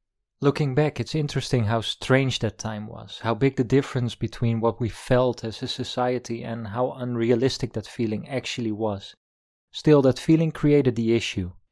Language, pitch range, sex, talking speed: English, 110-130 Hz, male, 170 wpm